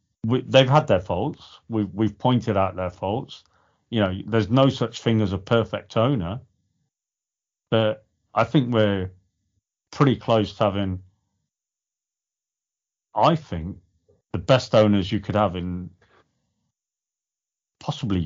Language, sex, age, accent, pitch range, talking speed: English, male, 40-59, British, 95-115 Hz, 120 wpm